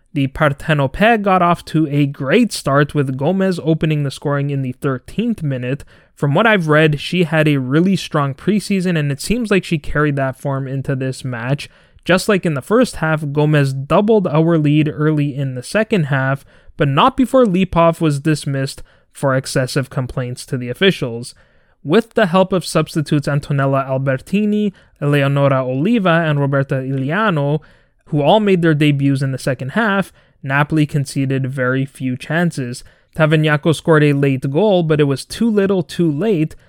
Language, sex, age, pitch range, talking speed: English, male, 20-39, 135-170 Hz, 170 wpm